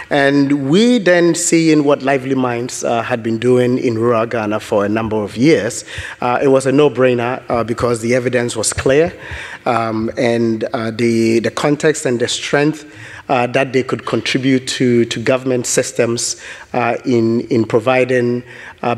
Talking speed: 165 wpm